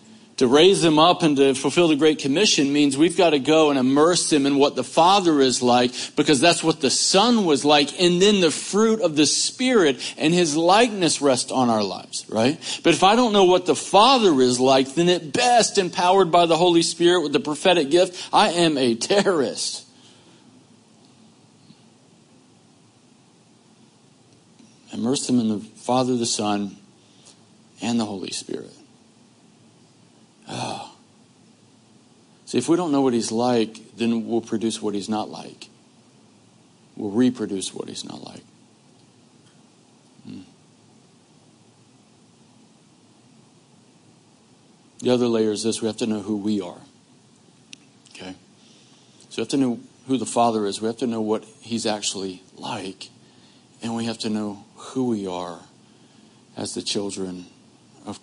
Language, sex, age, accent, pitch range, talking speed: English, male, 50-69, American, 115-170 Hz, 150 wpm